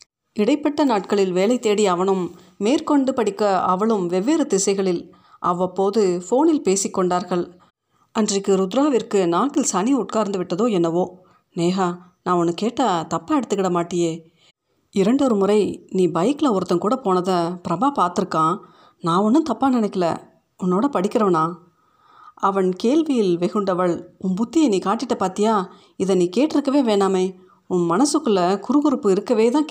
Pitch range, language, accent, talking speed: 180-235 Hz, Tamil, native, 115 wpm